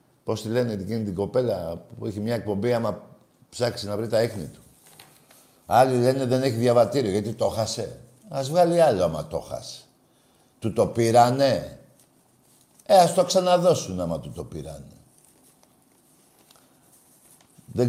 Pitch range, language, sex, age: 100-135 Hz, Greek, male, 50-69